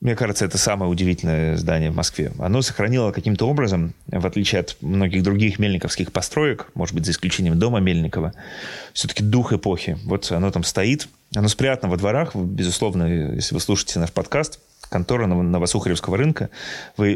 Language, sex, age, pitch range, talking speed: Russian, male, 30-49, 90-115 Hz, 160 wpm